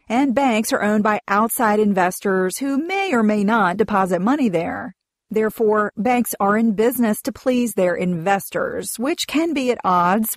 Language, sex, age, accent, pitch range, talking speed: English, female, 40-59, American, 195-255 Hz, 170 wpm